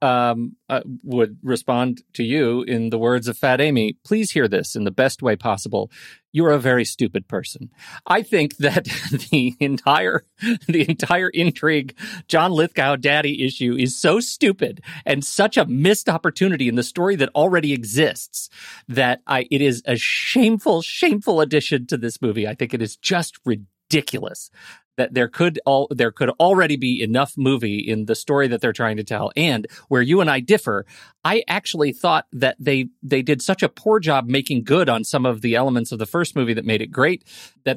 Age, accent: 40-59, American